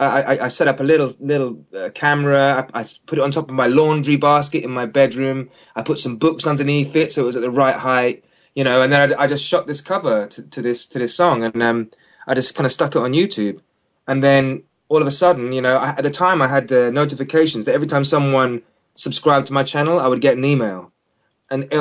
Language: English